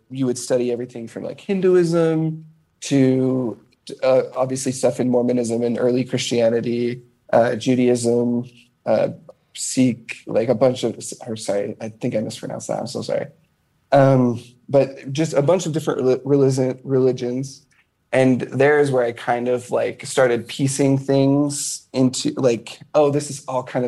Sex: male